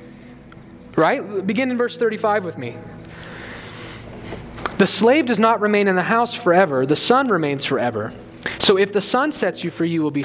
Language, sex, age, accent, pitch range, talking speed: English, male, 30-49, American, 165-230 Hz, 175 wpm